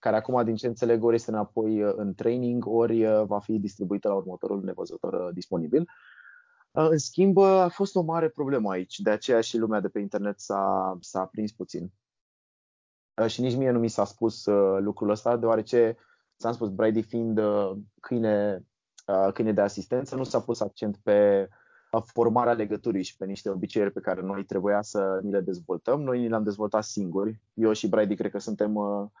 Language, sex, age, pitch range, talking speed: Romanian, male, 20-39, 100-120 Hz, 175 wpm